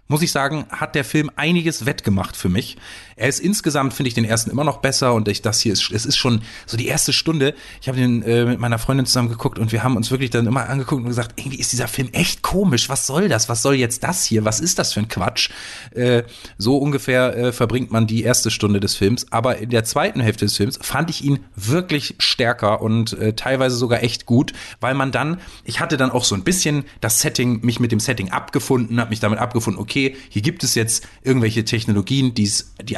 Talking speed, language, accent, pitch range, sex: 235 wpm, German, German, 110-140 Hz, male